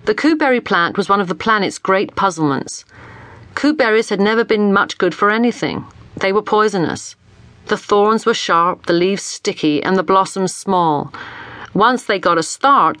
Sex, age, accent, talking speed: female, 40-59, British, 170 wpm